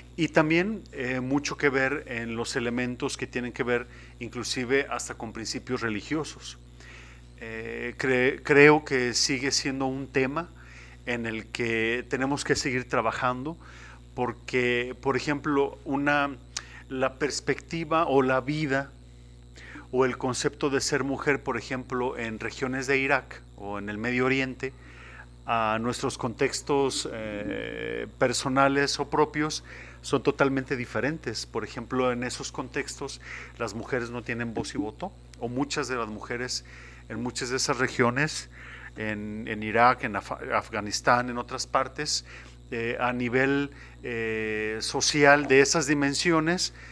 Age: 40-59